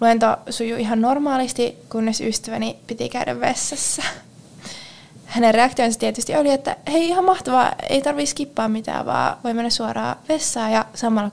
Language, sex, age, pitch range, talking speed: Finnish, female, 20-39, 230-325 Hz, 150 wpm